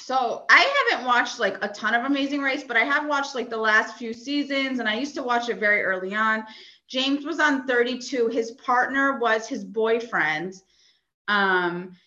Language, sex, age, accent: English, female, 30-49, American